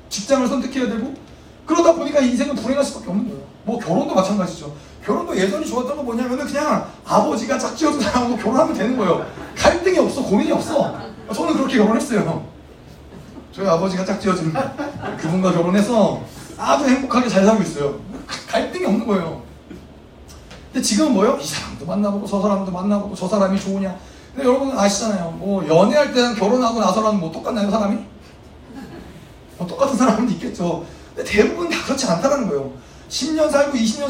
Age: 30-49